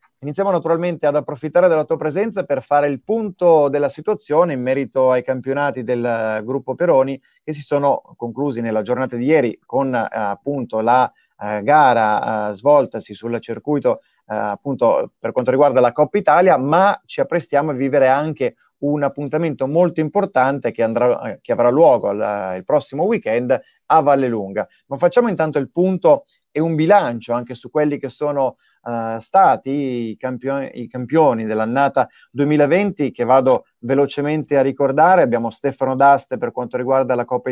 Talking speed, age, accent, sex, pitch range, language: 155 wpm, 20-39, native, male, 125-155 Hz, Italian